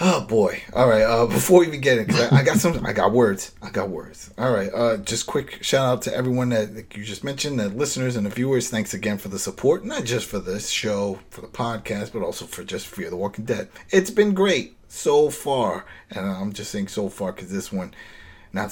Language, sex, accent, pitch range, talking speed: English, male, American, 100-130 Hz, 240 wpm